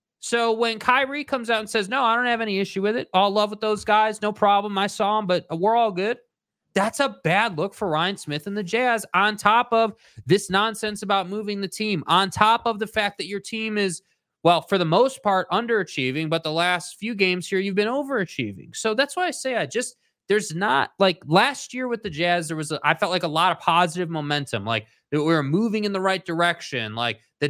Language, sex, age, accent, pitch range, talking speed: English, male, 20-39, American, 165-215 Hz, 235 wpm